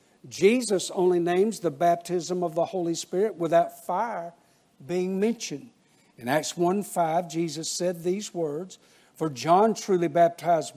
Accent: American